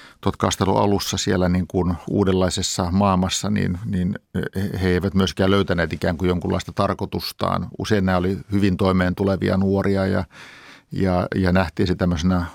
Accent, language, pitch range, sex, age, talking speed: native, Finnish, 90-100 Hz, male, 50-69, 140 wpm